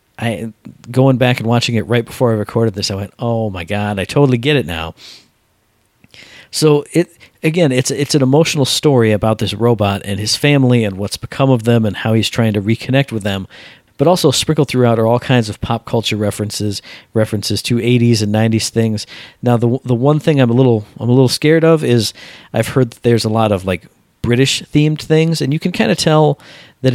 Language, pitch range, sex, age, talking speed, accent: English, 110-140 Hz, male, 40-59, 215 wpm, American